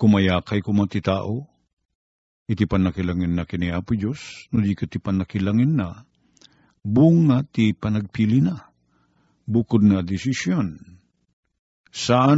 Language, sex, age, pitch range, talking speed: Filipino, male, 50-69, 95-130 Hz, 100 wpm